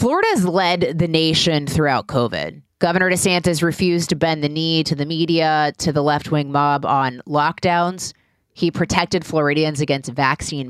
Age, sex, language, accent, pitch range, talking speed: 20-39, female, English, American, 145-175 Hz, 150 wpm